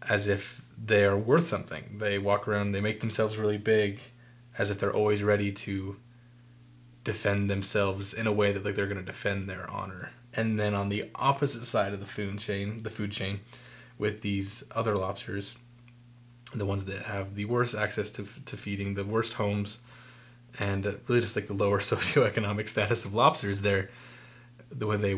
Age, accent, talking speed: 20-39, American, 180 wpm